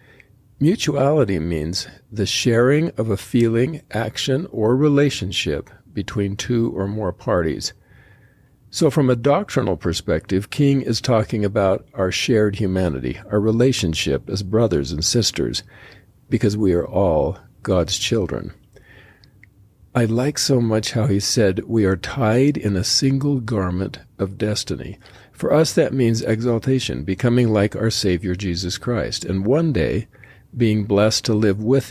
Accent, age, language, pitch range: American, 50-69, English, 95-125 Hz